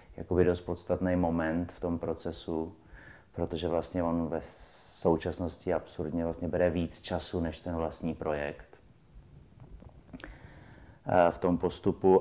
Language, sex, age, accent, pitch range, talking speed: Czech, male, 30-49, native, 80-90 Hz, 120 wpm